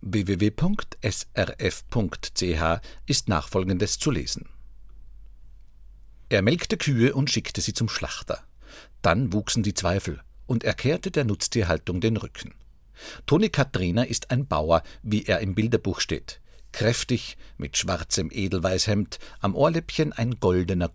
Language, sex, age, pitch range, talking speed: German, male, 50-69, 90-125 Hz, 120 wpm